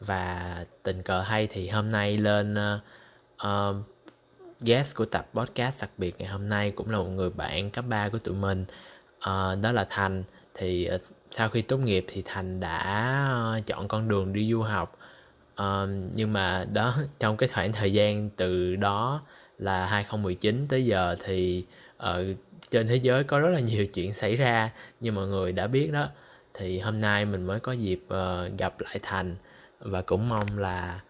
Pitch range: 95-115 Hz